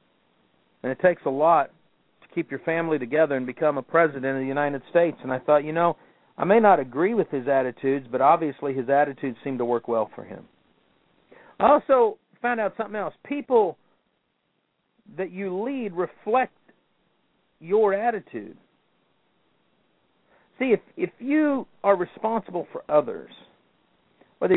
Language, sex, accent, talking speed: English, male, American, 150 wpm